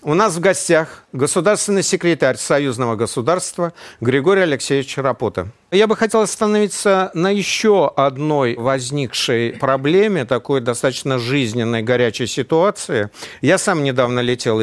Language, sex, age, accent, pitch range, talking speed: Russian, male, 50-69, native, 125-170 Hz, 120 wpm